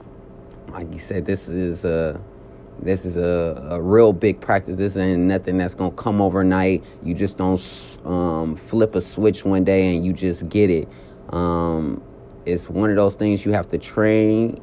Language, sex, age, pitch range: English, male, 30-49, 85-100 Hz